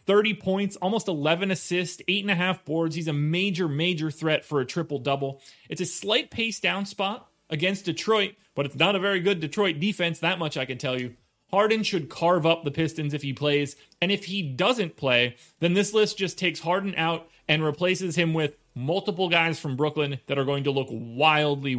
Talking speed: 200 wpm